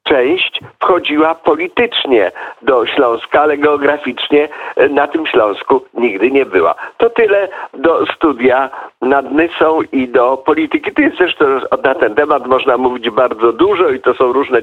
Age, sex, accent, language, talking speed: 50-69, male, native, Polish, 150 wpm